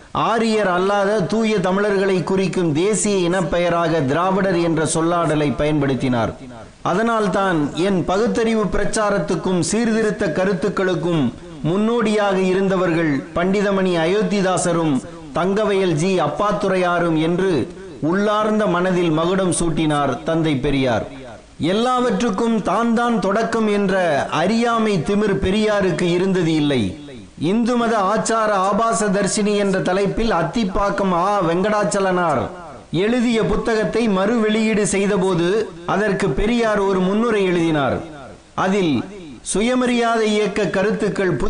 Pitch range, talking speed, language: 175-210 Hz, 75 wpm, Tamil